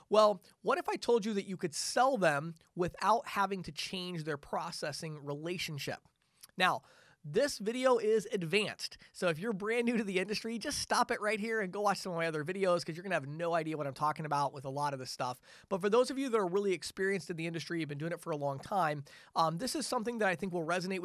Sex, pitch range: male, 160-210 Hz